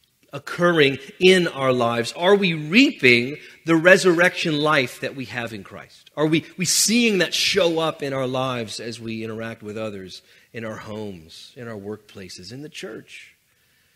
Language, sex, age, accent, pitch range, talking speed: English, male, 40-59, American, 120-175 Hz, 170 wpm